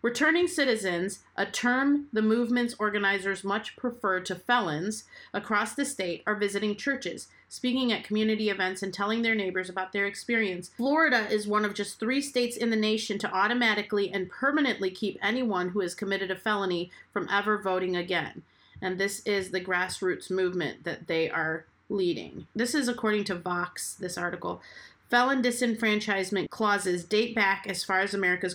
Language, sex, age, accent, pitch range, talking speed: English, female, 30-49, American, 180-215 Hz, 165 wpm